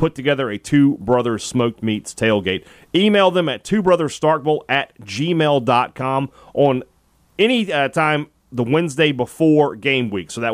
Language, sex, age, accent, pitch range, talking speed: English, male, 30-49, American, 110-145 Hz, 140 wpm